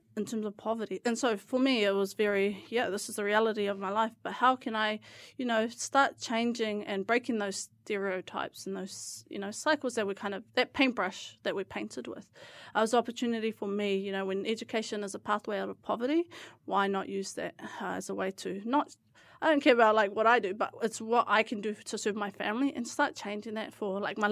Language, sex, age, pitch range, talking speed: English, female, 30-49, 200-235 Hz, 235 wpm